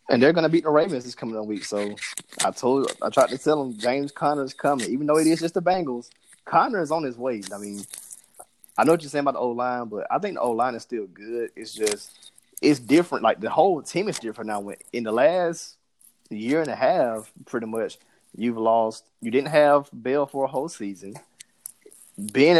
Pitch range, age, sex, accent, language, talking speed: 110-145 Hz, 20-39, male, American, English, 230 wpm